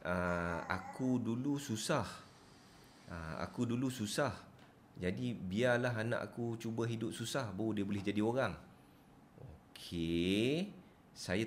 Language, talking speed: Malay, 115 wpm